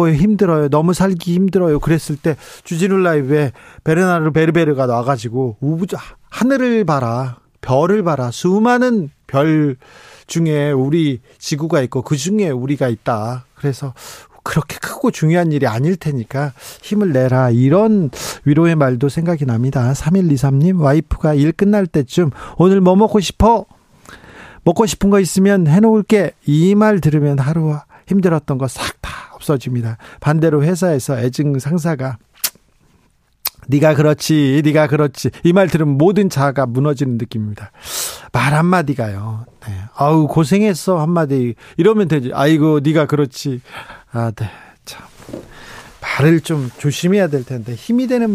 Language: Korean